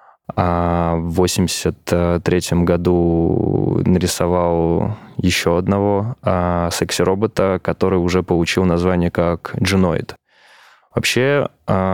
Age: 20-39